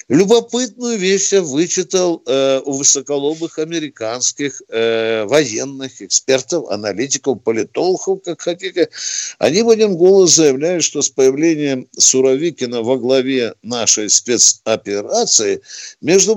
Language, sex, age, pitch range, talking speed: Russian, male, 60-79, 130-185 Hz, 105 wpm